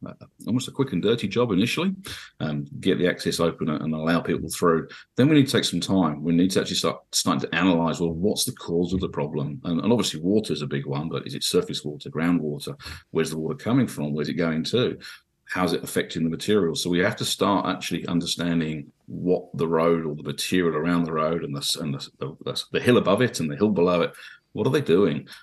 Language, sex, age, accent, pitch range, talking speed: English, male, 40-59, British, 75-90 Hz, 240 wpm